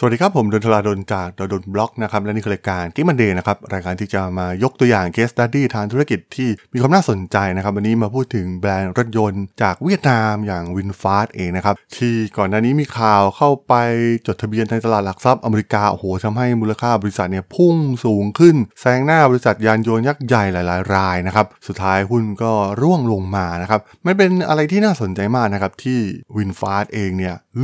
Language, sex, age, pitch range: Thai, male, 20-39, 100-125 Hz